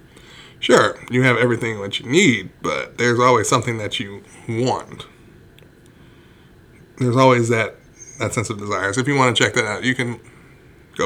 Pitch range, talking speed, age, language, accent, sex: 105-125 Hz, 170 wpm, 20-39, English, American, male